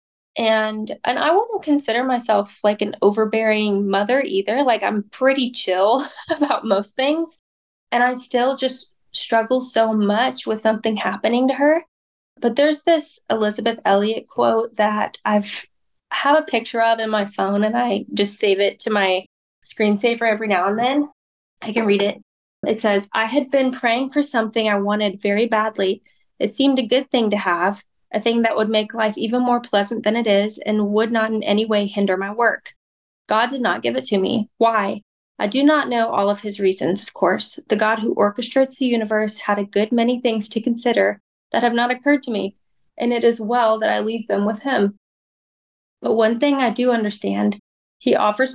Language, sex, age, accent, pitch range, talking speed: English, female, 10-29, American, 205-245 Hz, 195 wpm